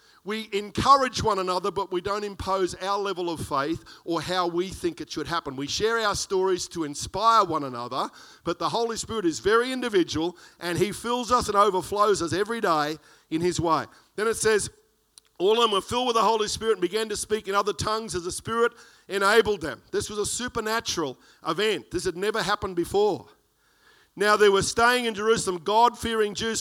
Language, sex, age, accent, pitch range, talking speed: English, male, 50-69, Australian, 165-225 Hz, 200 wpm